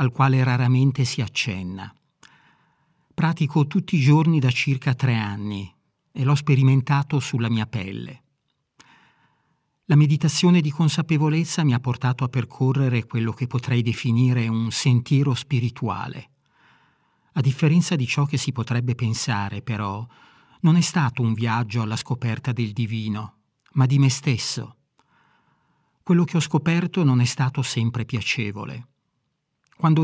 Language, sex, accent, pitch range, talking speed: Italian, male, native, 120-150 Hz, 135 wpm